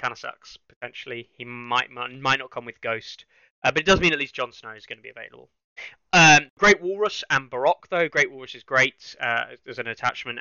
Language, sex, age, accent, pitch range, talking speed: English, male, 20-39, British, 115-145 Hz, 230 wpm